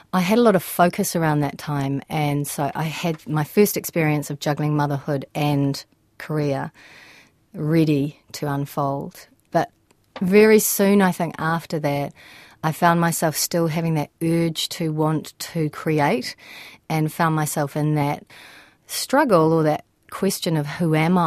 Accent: Australian